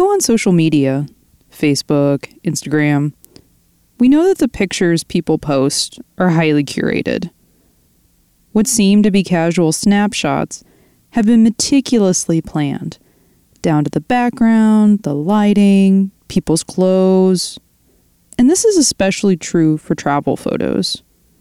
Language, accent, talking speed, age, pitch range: English, American, 115 wpm, 20-39, 160-215 Hz